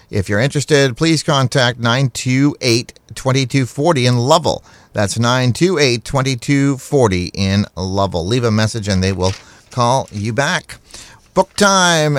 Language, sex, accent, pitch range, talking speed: English, male, American, 100-135 Hz, 115 wpm